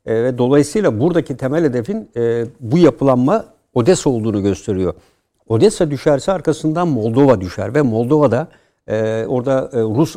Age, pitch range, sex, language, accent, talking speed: 60-79, 115-150 Hz, male, Turkish, native, 120 wpm